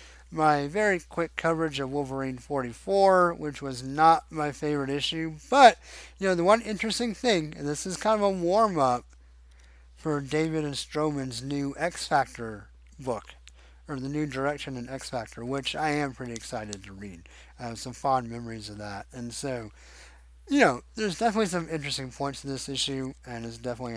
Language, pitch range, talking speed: English, 110-170 Hz, 175 wpm